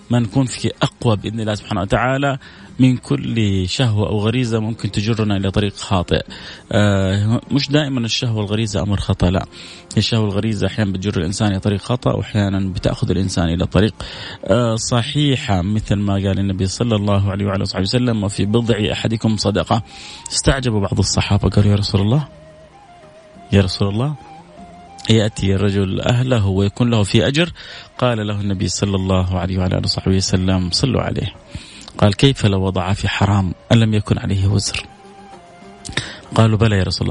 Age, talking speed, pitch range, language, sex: 30-49, 155 wpm, 100-125 Hz, Arabic, male